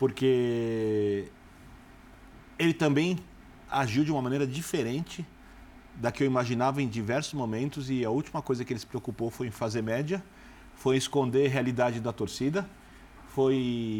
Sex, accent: male, Brazilian